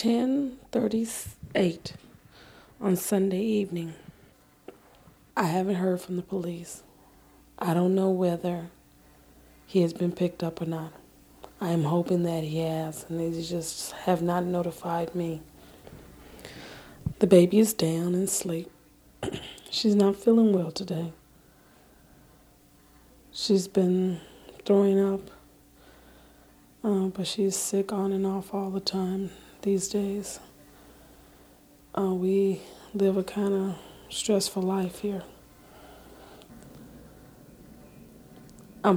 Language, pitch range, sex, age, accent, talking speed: English, 170-195 Hz, female, 20-39, American, 110 wpm